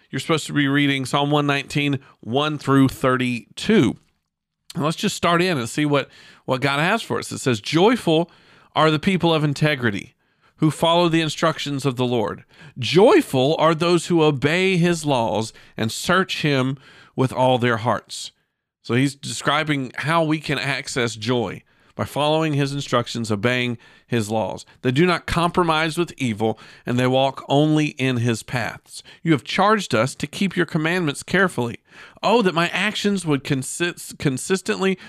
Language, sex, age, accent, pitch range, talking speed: English, male, 50-69, American, 125-165 Hz, 160 wpm